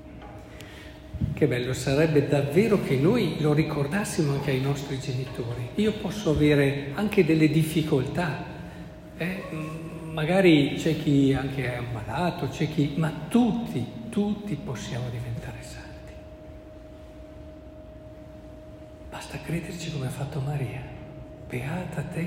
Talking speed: 110 wpm